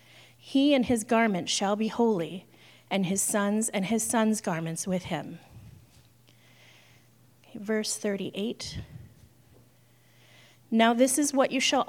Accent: American